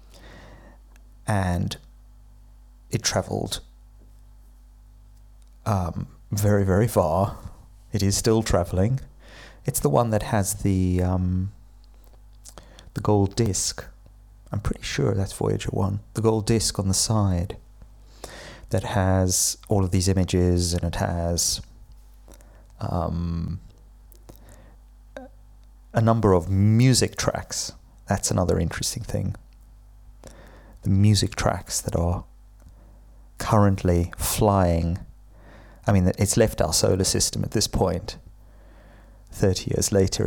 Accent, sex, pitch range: British, male, 90-110 Hz